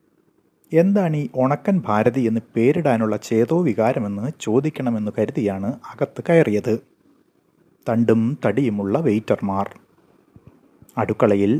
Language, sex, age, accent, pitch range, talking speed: Malayalam, male, 30-49, native, 105-140 Hz, 85 wpm